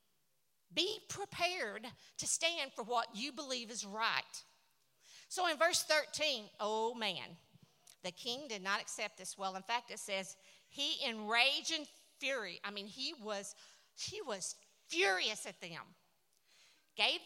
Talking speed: 145 wpm